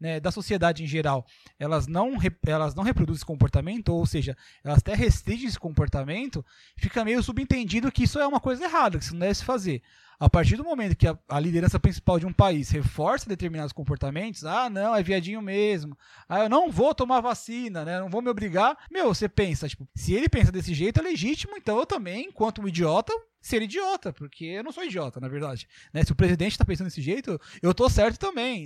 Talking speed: 220 wpm